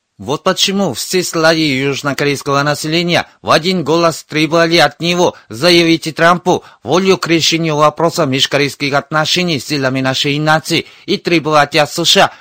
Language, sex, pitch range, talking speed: Russian, male, 140-170 Hz, 135 wpm